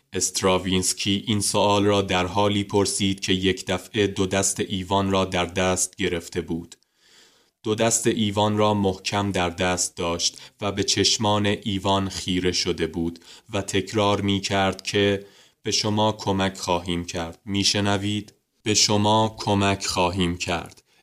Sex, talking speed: male, 145 wpm